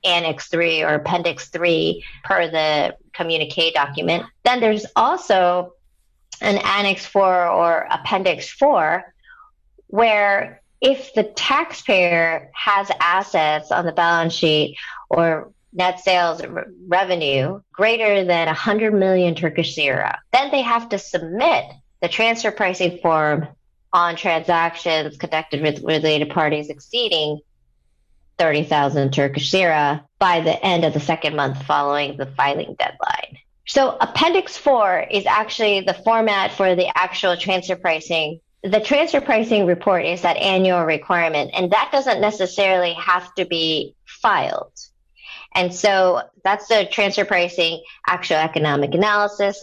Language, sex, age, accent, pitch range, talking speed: English, female, 30-49, American, 160-200 Hz, 130 wpm